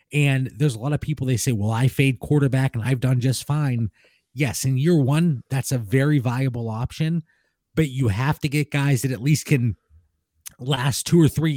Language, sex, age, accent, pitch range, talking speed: English, male, 20-39, American, 125-155 Hz, 205 wpm